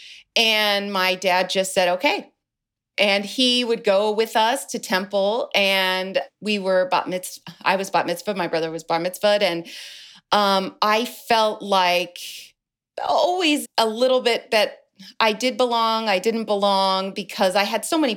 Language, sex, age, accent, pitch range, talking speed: English, female, 30-49, American, 175-215 Hz, 160 wpm